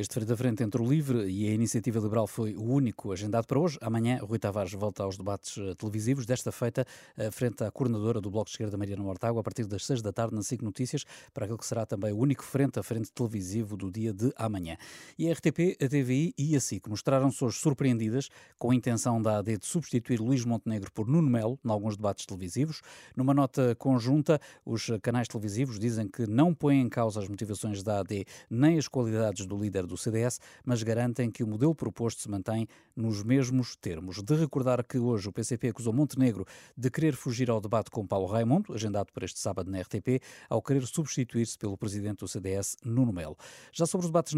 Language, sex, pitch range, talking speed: Portuguese, male, 105-135 Hz, 210 wpm